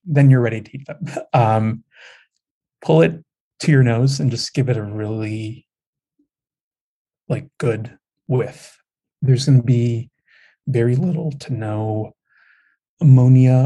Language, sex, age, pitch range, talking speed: English, male, 30-49, 120-150 Hz, 130 wpm